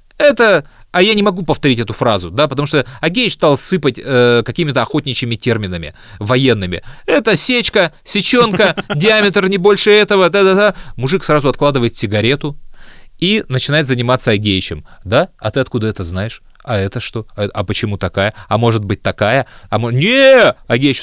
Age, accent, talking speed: 30-49, native, 155 wpm